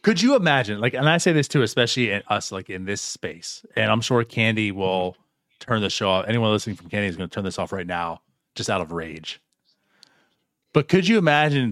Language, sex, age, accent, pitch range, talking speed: English, male, 30-49, American, 105-150 Hz, 230 wpm